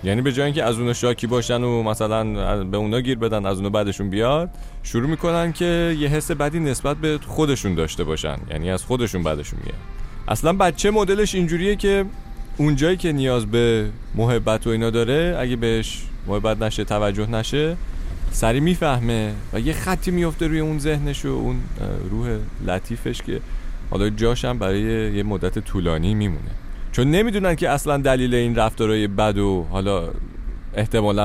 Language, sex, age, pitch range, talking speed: Persian, male, 30-49, 95-140 Hz, 165 wpm